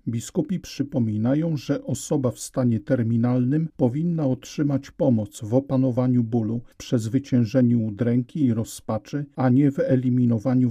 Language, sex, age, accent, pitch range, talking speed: Polish, male, 50-69, native, 120-145 Hz, 125 wpm